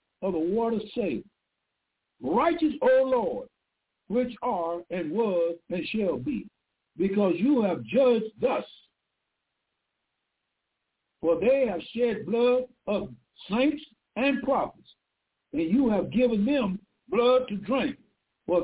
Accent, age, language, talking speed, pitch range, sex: American, 60-79, English, 120 wpm, 210-270 Hz, male